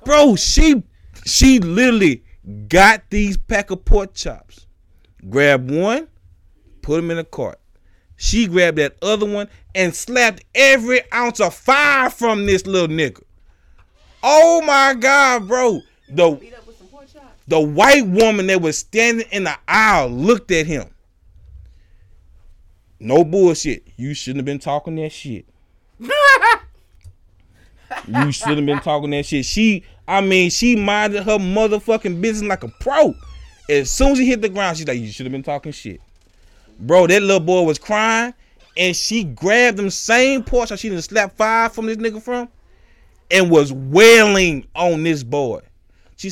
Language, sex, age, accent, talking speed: English, male, 20-39, American, 150 wpm